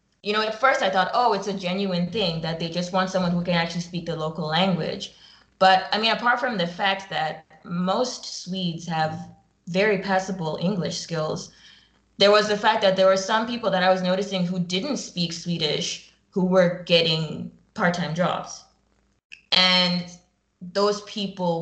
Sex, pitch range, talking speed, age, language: female, 170-190 Hz, 175 wpm, 20-39, English